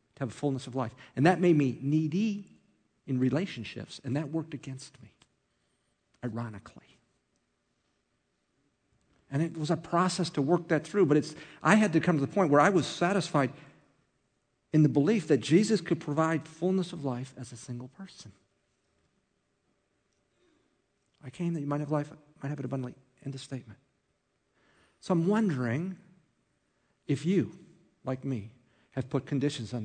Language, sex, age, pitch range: English, male, 50-69, 125-155 Hz